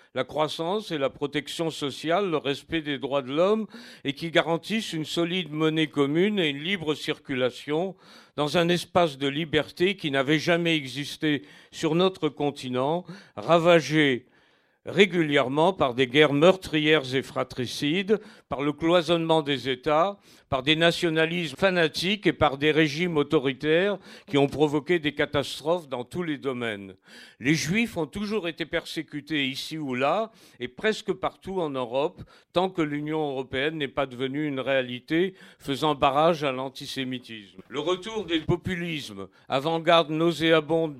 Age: 50-69